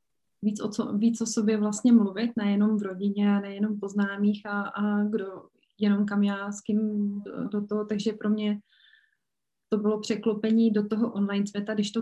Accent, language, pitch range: native, Czech, 205-225 Hz